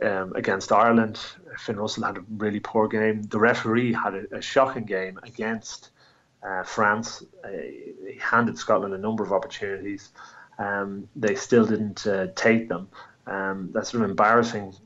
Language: English